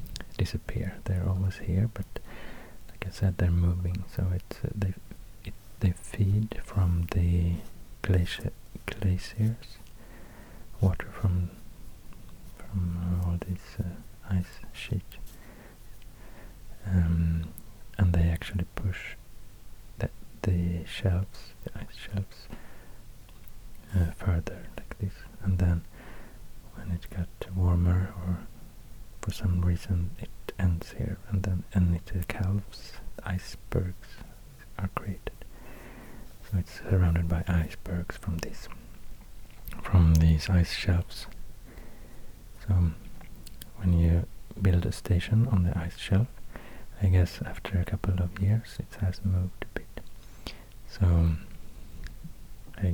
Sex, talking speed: male, 110 wpm